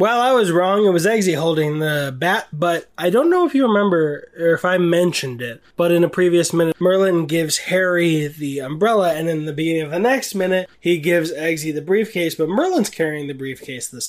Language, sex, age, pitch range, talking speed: English, male, 20-39, 135-175 Hz, 215 wpm